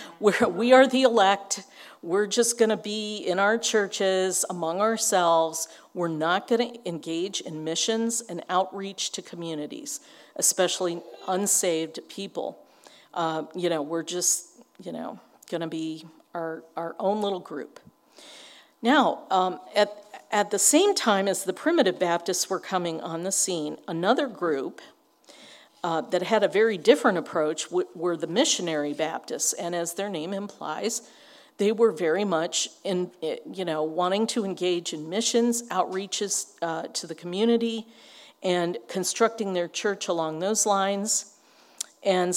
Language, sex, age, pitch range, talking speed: English, female, 50-69, 170-215 Hz, 145 wpm